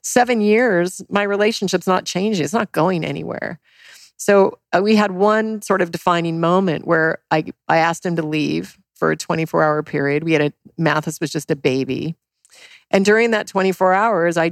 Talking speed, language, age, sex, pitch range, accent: 180 wpm, English, 40-59, female, 155-195 Hz, American